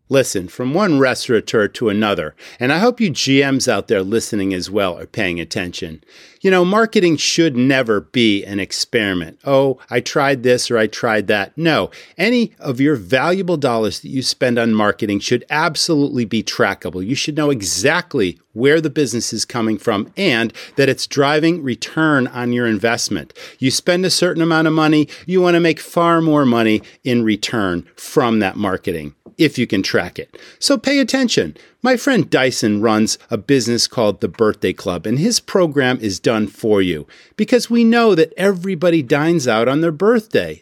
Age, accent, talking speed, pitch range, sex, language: 40-59, American, 180 wpm, 115-185 Hz, male, English